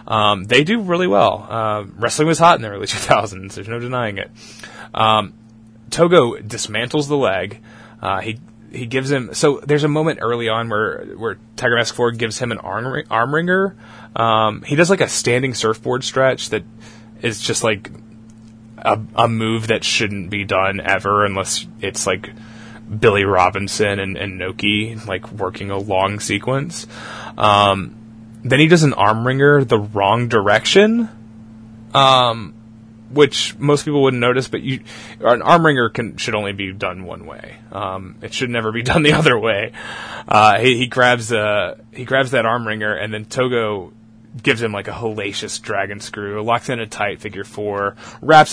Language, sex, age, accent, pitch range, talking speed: English, male, 20-39, American, 105-120 Hz, 170 wpm